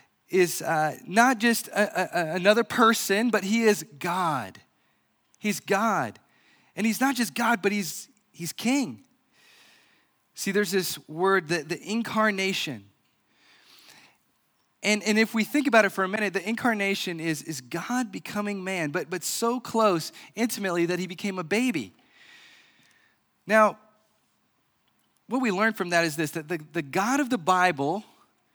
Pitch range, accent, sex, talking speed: 190-235 Hz, American, male, 150 wpm